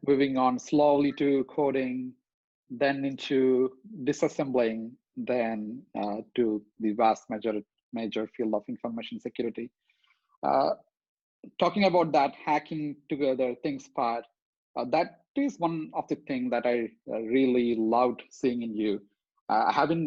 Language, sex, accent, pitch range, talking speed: English, male, Indian, 110-145 Hz, 135 wpm